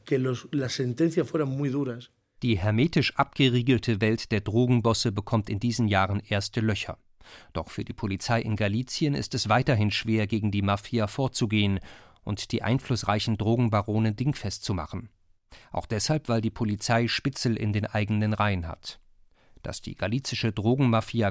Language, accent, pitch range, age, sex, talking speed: German, German, 100-120 Hz, 40-59, male, 135 wpm